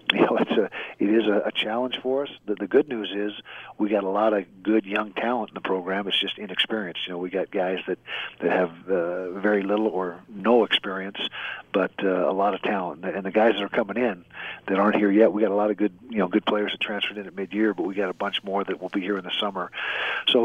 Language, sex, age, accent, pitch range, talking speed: English, male, 50-69, American, 95-110 Hz, 265 wpm